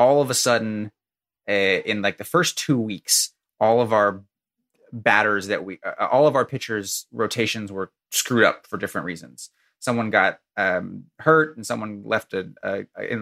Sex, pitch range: male, 100-120 Hz